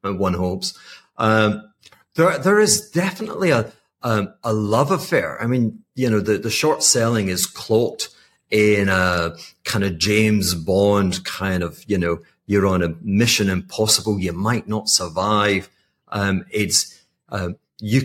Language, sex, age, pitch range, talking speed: English, male, 40-59, 95-120 Hz, 150 wpm